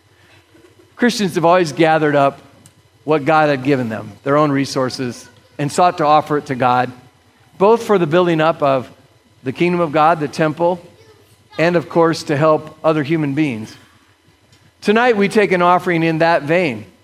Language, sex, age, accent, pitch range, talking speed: English, male, 50-69, American, 135-170 Hz, 170 wpm